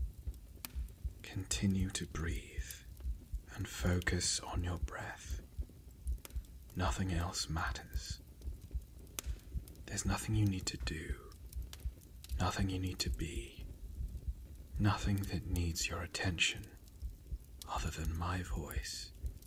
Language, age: English, 30-49